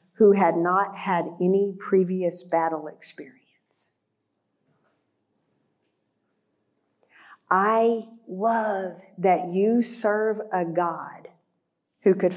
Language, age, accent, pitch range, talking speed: English, 50-69, American, 165-210 Hz, 80 wpm